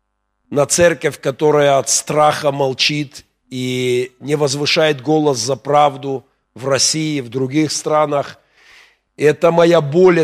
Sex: male